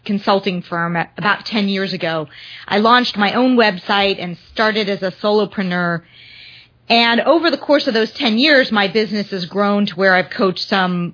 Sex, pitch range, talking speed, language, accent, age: female, 180-240 Hz, 180 wpm, English, American, 30-49